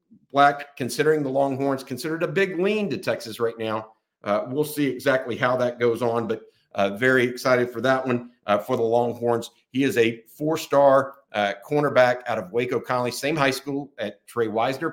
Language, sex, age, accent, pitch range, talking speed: English, male, 50-69, American, 115-145 Hz, 185 wpm